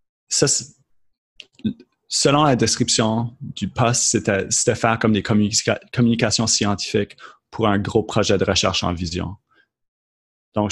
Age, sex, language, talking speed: 30-49, male, English, 135 wpm